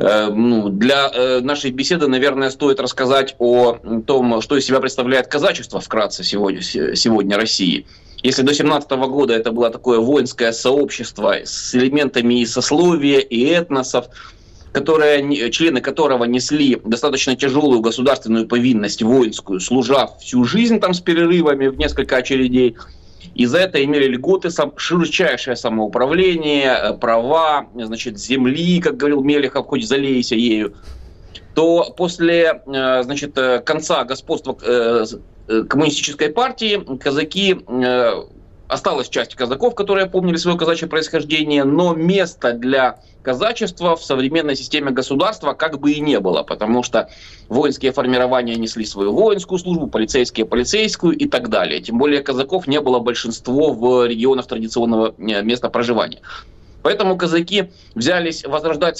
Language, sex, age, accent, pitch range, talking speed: Russian, male, 20-39, native, 120-160 Hz, 125 wpm